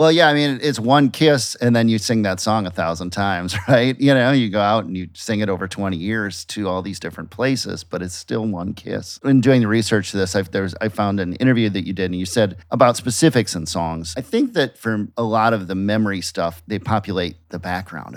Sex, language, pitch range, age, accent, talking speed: male, English, 90-115 Hz, 40-59, American, 250 wpm